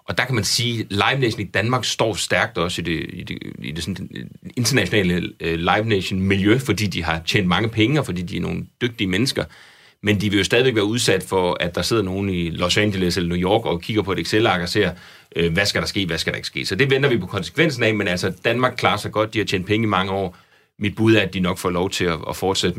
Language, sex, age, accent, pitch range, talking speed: Danish, male, 30-49, native, 90-110 Hz, 265 wpm